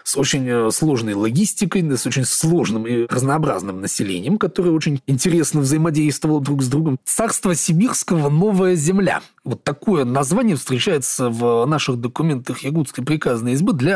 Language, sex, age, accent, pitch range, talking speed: Russian, male, 30-49, native, 125-170 Hz, 140 wpm